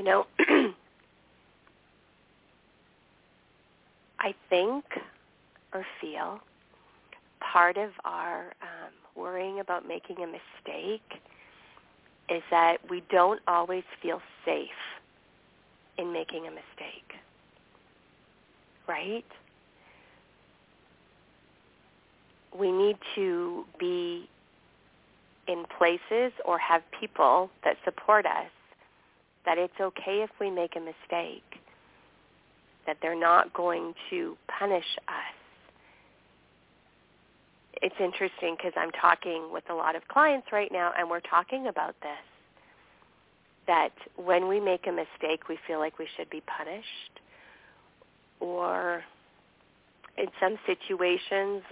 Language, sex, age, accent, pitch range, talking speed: English, female, 40-59, American, 170-210 Hz, 100 wpm